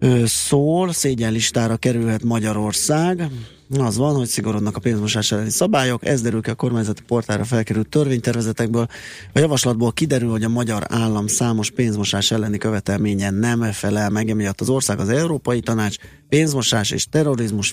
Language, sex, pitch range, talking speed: Hungarian, male, 105-125 Hz, 145 wpm